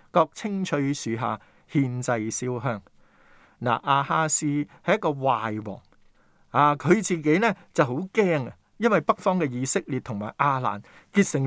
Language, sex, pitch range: Chinese, male, 115-175 Hz